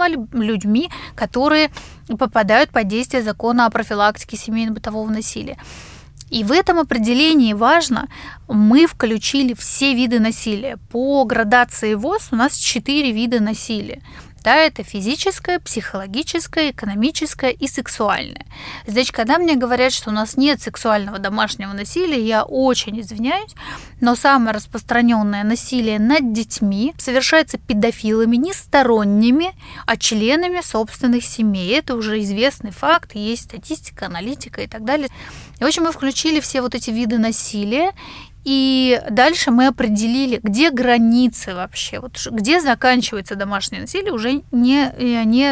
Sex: female